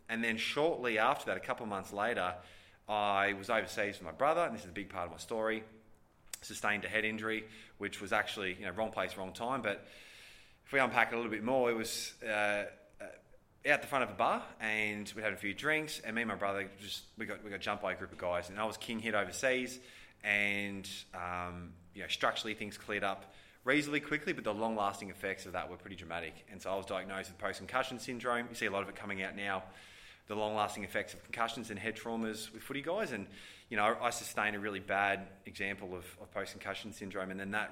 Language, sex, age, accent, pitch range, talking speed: English, male, 20-39, Australian, 95-115 Hz, 235 wpm